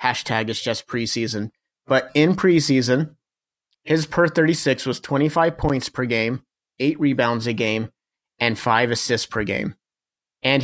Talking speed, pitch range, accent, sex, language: 150 wpm, 125-150 Hz, American, male, English